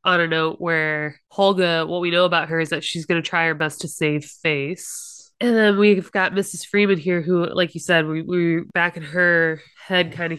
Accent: American